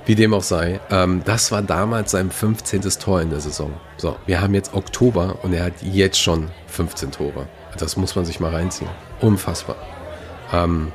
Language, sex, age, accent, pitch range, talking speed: German, male, 40-59, German, 80-95 Hz, 185 wpm